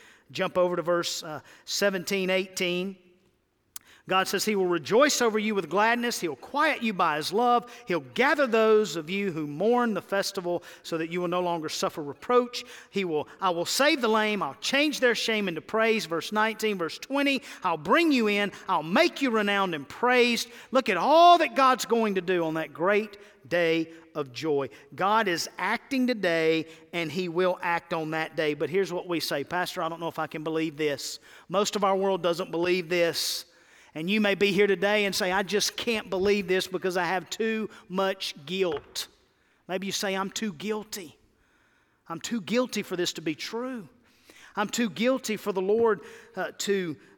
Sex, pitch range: male, 180-245 Hz